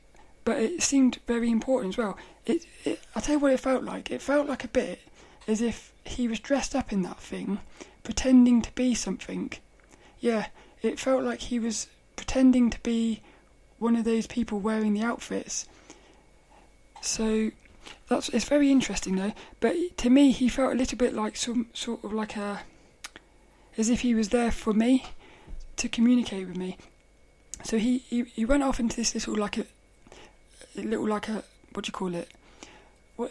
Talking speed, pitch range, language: 185 wpm, 215-250 Hz, English